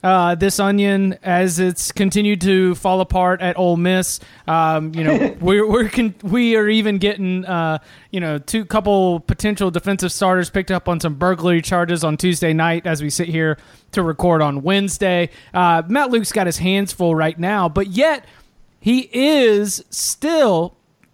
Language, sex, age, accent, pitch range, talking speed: English, male, 30-49, American, 170-205 Hz, 175 wpm